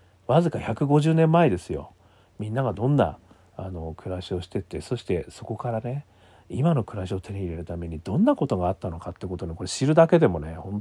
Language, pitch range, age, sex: Japanese, 90-125 Hz, 40-59, male